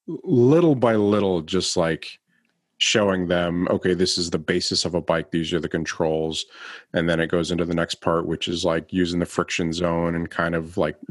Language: English